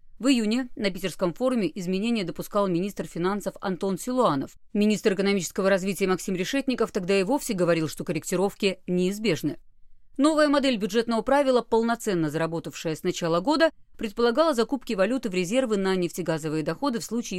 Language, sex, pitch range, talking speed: Russian, female, 170-230 Hz, 145 wpm